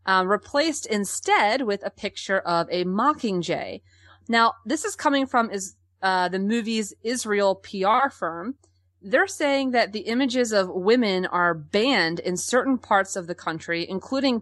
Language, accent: English, American